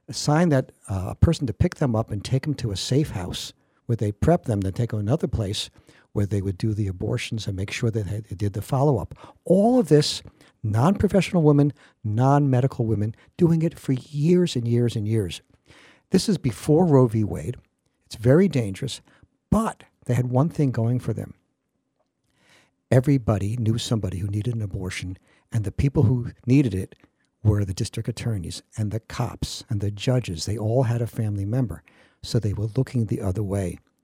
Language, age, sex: English, 60-79, male